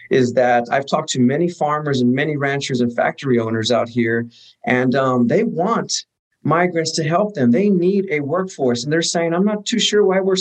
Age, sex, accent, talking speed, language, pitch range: 50-69, male, American, 210 wpm, English, 125-170 Hz